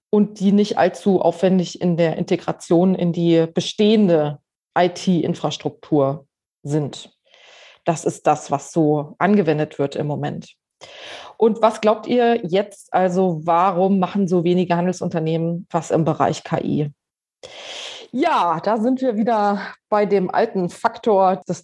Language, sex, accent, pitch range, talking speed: German, female, German, 175-215 Hz, 130 wpm